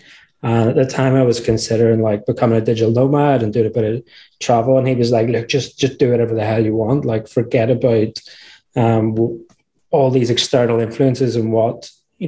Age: 20-39